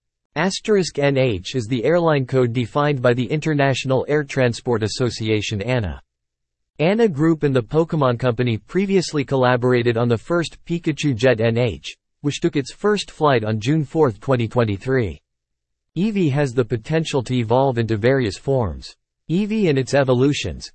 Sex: male